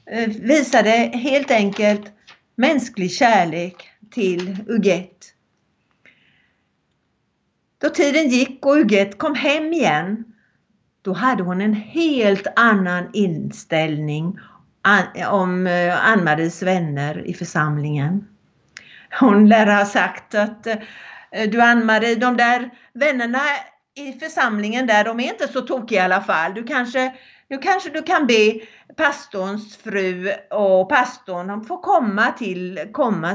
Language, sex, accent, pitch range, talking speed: Swedish, female, native, 185-245 Hz, 115 wpm